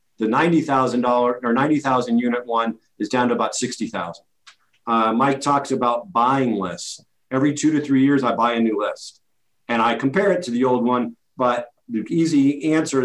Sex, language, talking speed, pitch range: male, English, 175 wpm, 120-135 Hz